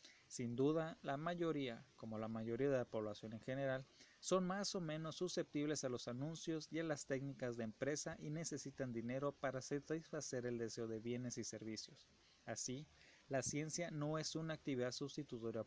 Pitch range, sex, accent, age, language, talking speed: 120-155 Hz, male, Mexican, 30-49, Spanish, 170 wpm